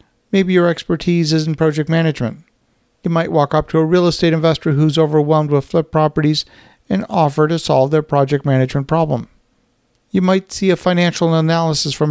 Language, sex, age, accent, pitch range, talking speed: English, male, 40-59, American, 135-160 Hz, 180 wpm